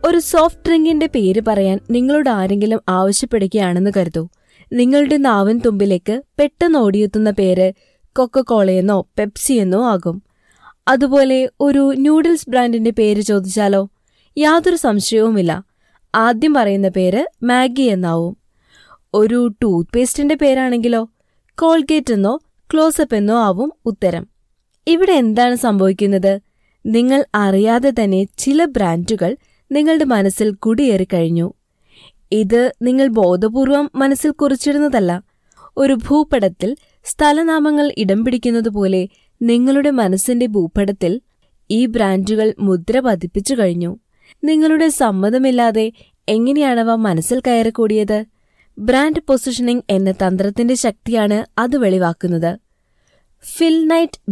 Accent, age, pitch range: native, 20-39, 200-275 Hz